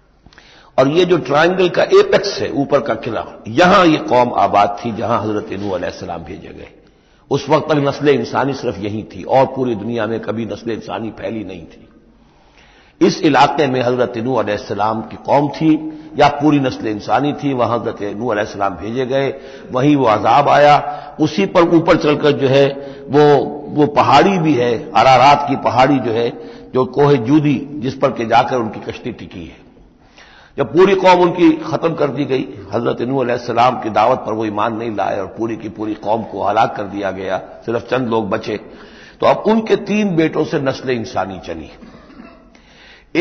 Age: 60-79